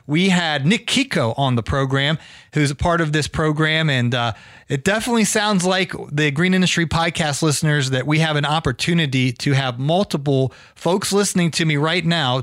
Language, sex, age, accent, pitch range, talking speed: English, male, 30-49, American, 135-180 Hz, 185 wpm